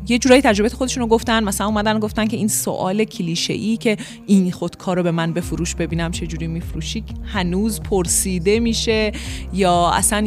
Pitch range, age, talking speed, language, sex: 185-235 Hz, 30-49, 175 wpm, Persian, female